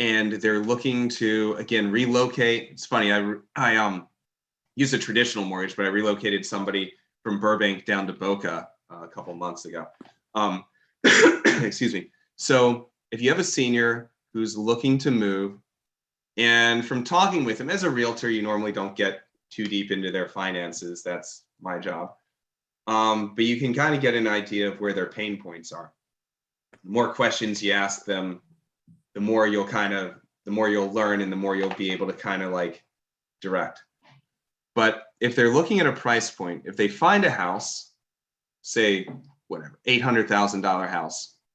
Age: 30-49